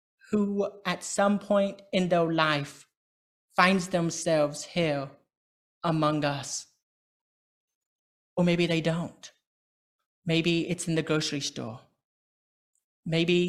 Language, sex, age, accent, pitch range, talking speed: English, male, 30-49, British, 150-185 Hz, 100 wpm